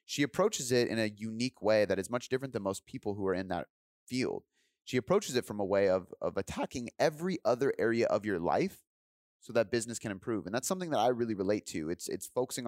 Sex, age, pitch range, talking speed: male, 30-49, 95-120 Hz, 235 wpm